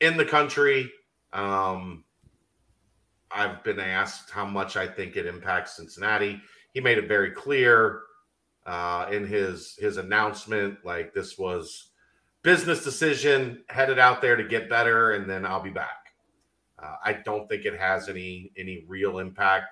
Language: English